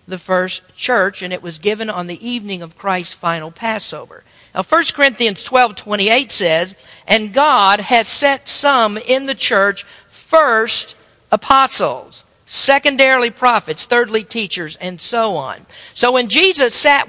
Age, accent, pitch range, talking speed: 50-69, American, 205-275 Hz, 145 wpm